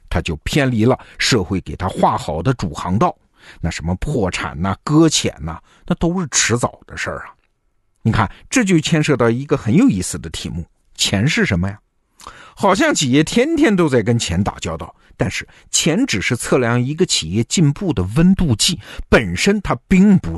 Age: 50-69